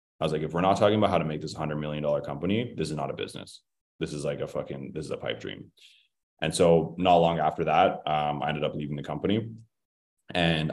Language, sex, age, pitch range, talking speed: English, male, 20-39, 75-85 Hz, 245 wpm